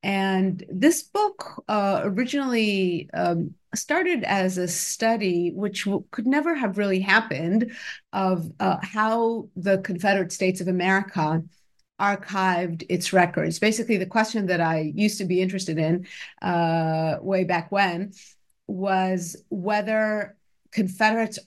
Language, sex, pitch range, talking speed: English, female, 180-210 Hz, 125 wpm